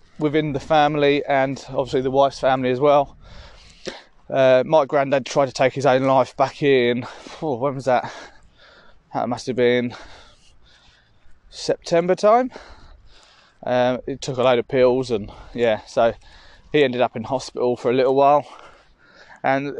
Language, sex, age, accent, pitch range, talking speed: English, male, 20-39, British, 130-150 Hz, 155 wpm